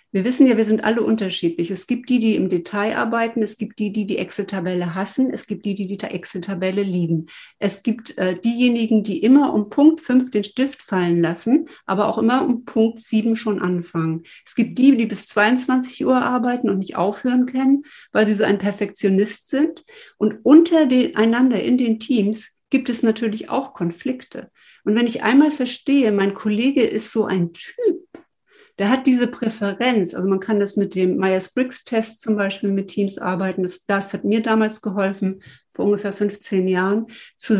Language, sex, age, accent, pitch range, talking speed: German, female, 60-79, German, 195-245 Hz, 185 wpm